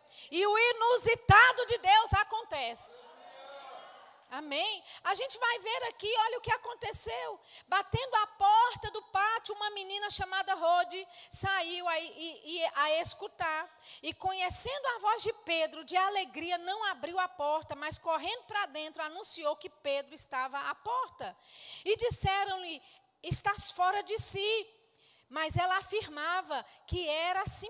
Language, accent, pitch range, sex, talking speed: Portuguese, Brazilian, 300-405 Hz, female, 140 wpm